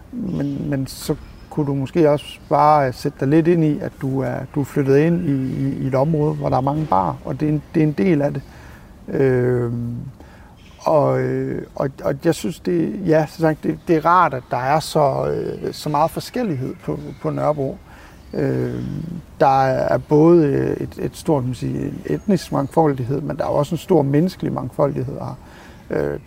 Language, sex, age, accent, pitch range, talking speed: Danish, male, 60-79, native, 135-165 Hz, 195 wpm